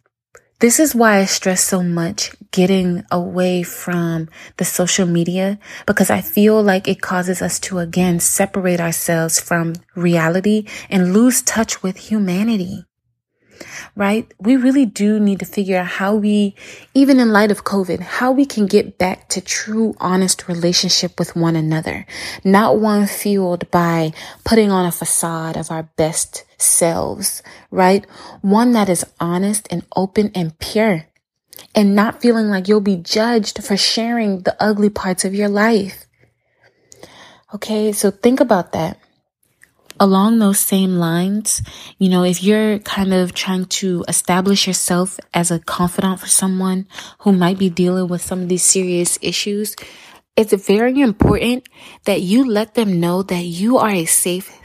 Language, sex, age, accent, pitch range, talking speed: English, female, 20-39, American, 180-210 Hz, 155 wpm